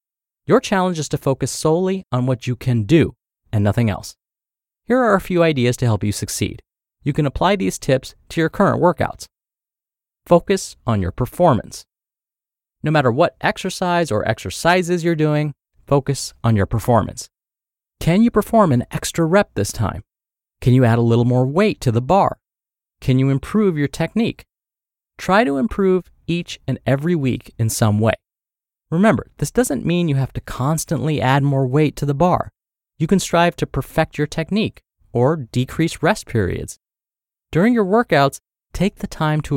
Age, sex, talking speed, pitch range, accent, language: 30-49, male, 170 wpm, 115-175 Hz, American, English